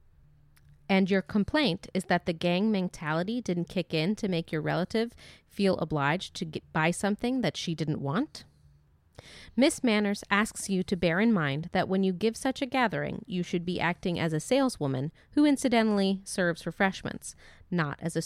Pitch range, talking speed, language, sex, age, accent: 165-235 Hz, 175 wpm, English, female, 30-49, American